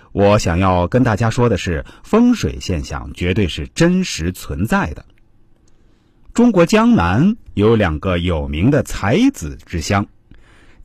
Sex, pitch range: male, 90-145 Hz